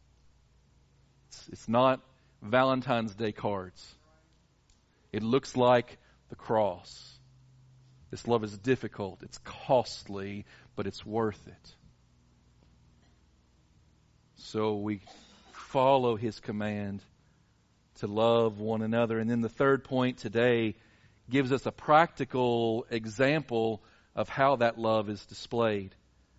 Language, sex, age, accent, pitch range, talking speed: English, male, 40-59, American, 105-160 Hz, 105 wpm